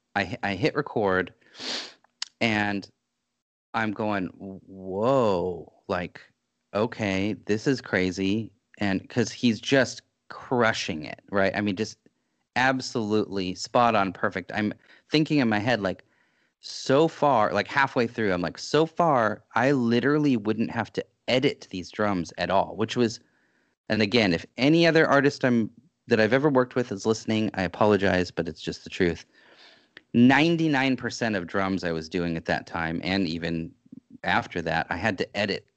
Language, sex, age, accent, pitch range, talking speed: English, male, 30-49, American, 95-125 Hz, 150 wpm